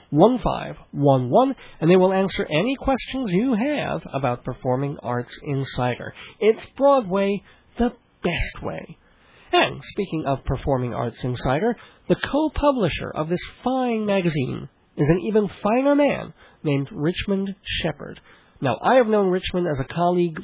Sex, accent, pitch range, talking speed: male, American, 150-225 Hz, 140 wpm